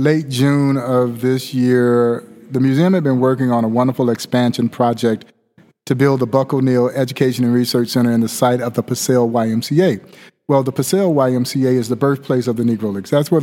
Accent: American